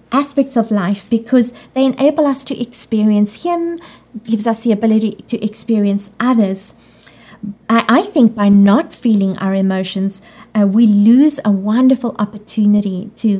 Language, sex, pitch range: English, female, 205-250 Hz